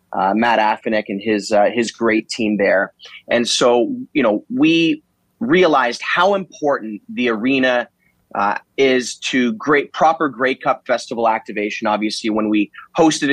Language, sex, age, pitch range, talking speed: English, male, 30-49, 110-135 Hz, 150 wpm